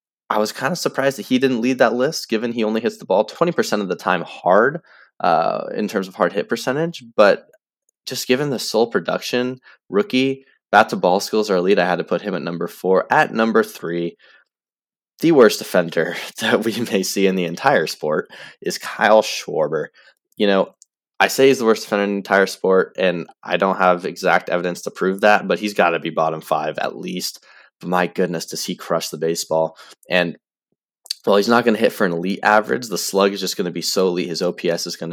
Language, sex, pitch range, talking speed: English, male, 90-115 Hz, 215 wpm